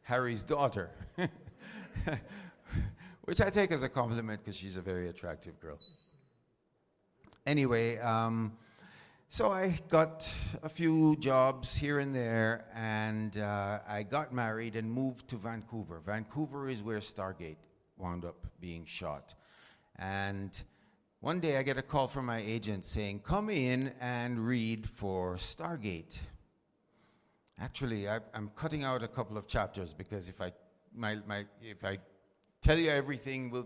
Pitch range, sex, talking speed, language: 100-130 Hz, male, 140 wpm, Italian